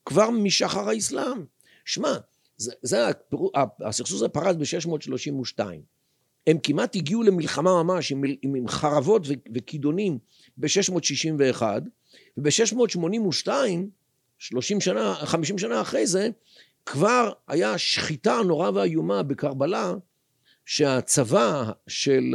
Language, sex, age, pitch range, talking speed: Hebrew, male, 50-69, 135-190 Hz, 90 wpm